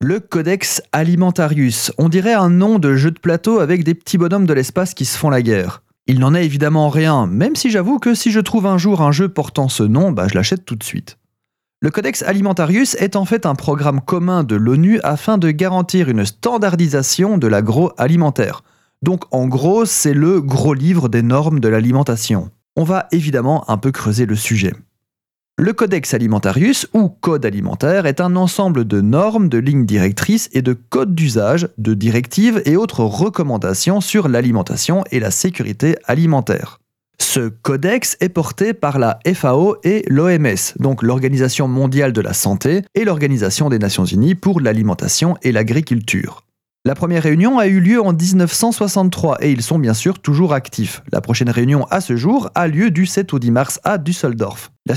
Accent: French